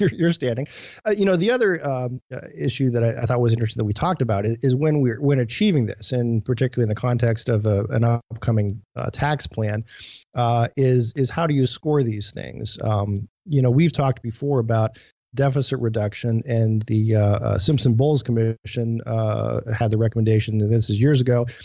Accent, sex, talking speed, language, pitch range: American, male, 200 wpm, English, 110-130 Hz